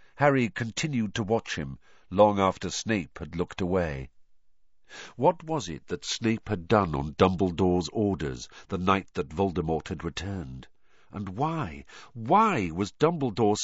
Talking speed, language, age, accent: 140 wpm, English, 50-69, British